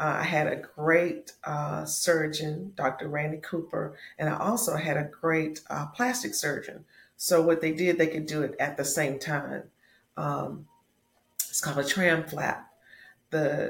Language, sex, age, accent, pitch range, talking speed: English, female, 40-59, American, 145-170 Hz, 160 wpm